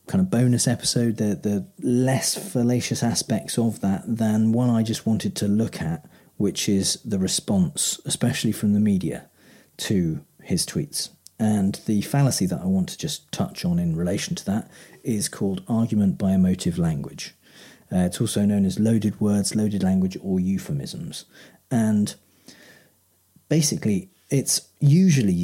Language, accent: English, British